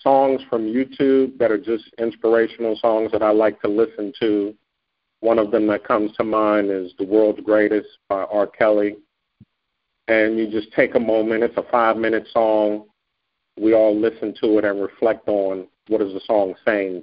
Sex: male